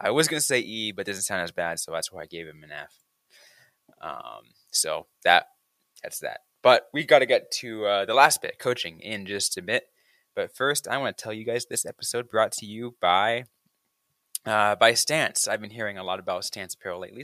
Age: 20-39